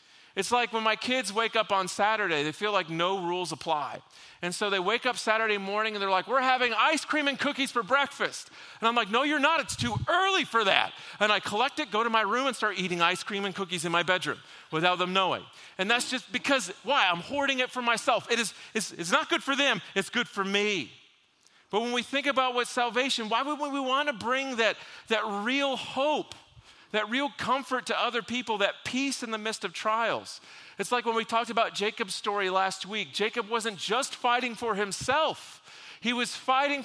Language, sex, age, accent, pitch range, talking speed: English, male, 40-59, American, 200-255 Hz, 220 wpm